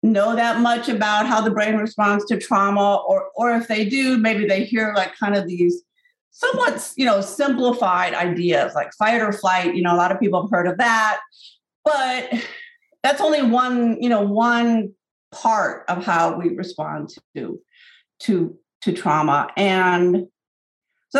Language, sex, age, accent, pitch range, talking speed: English, female, 50-69, American, 180-230 Hz, 165 wpm